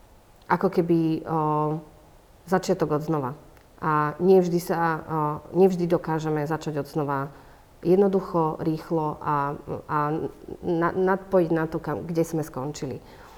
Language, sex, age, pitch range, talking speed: Slovak, female, 40-59, 150-180 Hz, 120 wpm